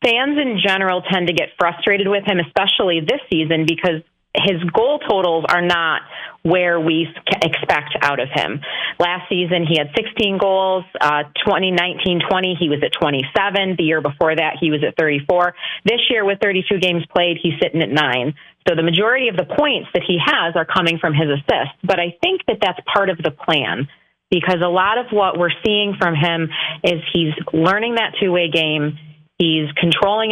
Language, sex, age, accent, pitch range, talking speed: English, female, 30-49, American, 165-195 Hz, 185 wpm